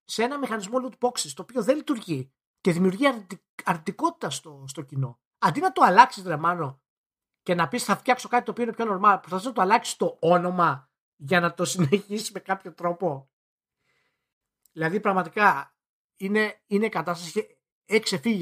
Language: Greek